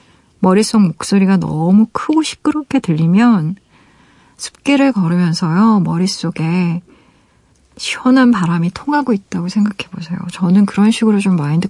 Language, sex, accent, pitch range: Korean, female, native, 170-220 Hz